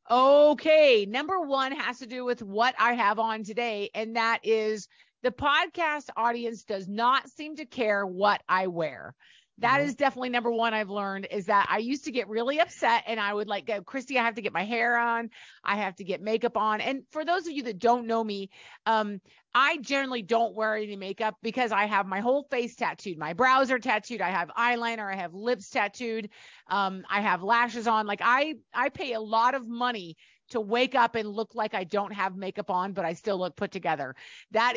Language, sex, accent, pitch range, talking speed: English, female, American, 210-265 Hz, 215 wpm